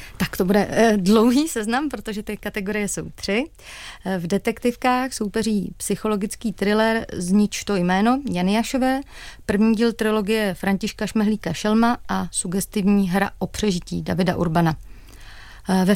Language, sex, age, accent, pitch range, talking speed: Czech, female, 30-49, native, 185-220 Hz, 130 wpm